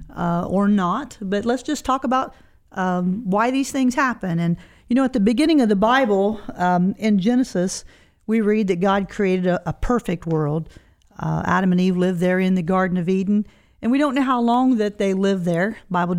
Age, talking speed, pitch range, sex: 50-69, 210 wpm, 185-230 Hz, female